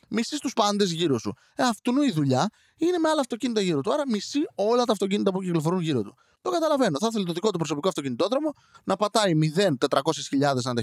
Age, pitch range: 20-39, 140-230 Hz